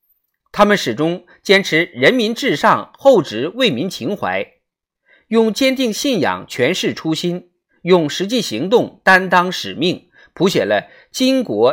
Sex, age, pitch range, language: male, 50-69, 195-265 Hz, Chinese